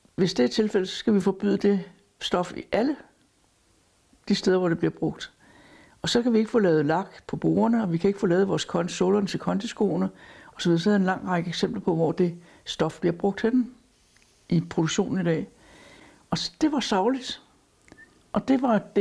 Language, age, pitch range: Danish, 60-79, 165-200 Hz